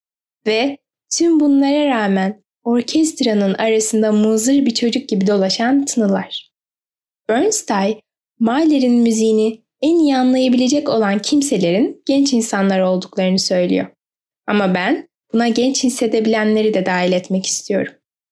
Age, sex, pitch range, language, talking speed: 10-29, female, 205-270 Hz, Turkish, 110 wpm